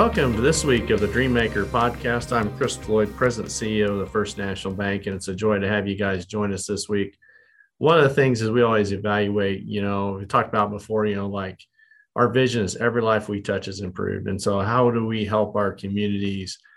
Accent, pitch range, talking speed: American, 95-110 Hz, 230 wpm